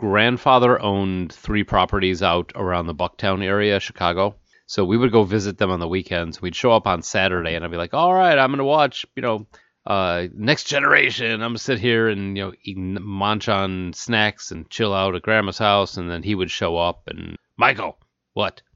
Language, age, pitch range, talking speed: English, 30-49, 90-110 Hz, 205 wpm